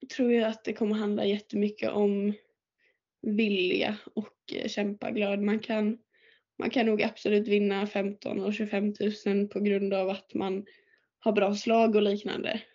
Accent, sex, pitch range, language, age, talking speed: native, female, 205-225 Hz, Swedish, 10-29, 155 wpm